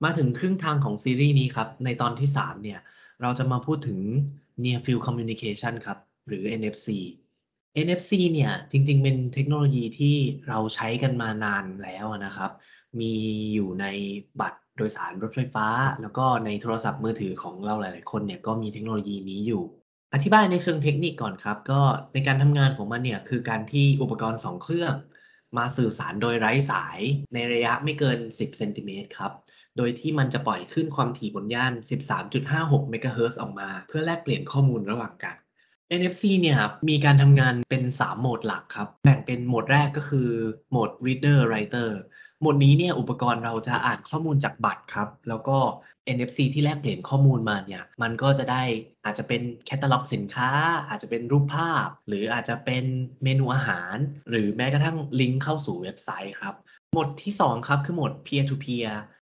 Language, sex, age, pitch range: Thai, male, 20-39, 115-145 Hz